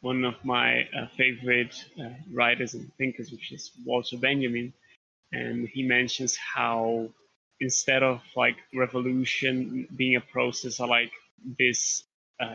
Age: 20-39